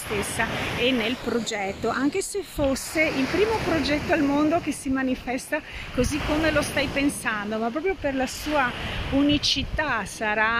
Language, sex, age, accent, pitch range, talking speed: Italian, female, 30-49, native, 215-255 Hz, 155 wpm